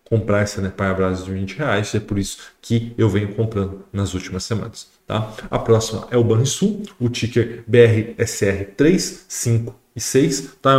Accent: Brazilian